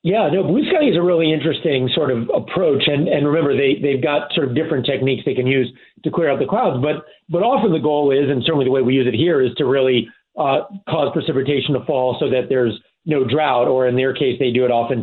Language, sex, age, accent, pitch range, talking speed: English, male, 40-59, American, 125-145 Hz, 255 wpm